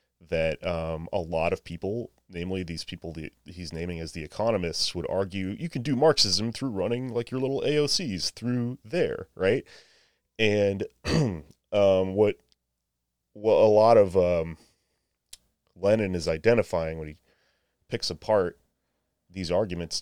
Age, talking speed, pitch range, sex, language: 30-49, 140 wpm, 80-95 Hz, male, English